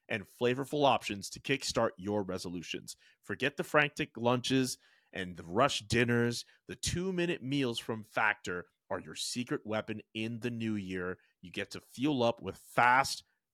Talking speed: 155 wpm